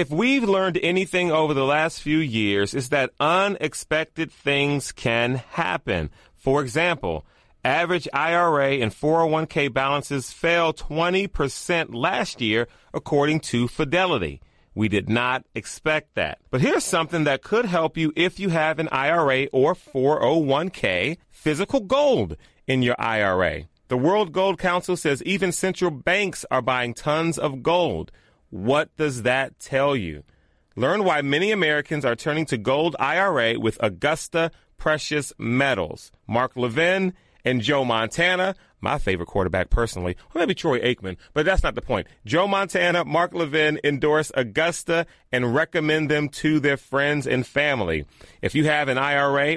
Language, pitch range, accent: English, 130-170 Hz, American